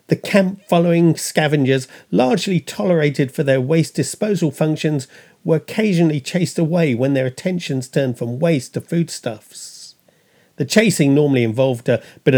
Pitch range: 140-190 Hz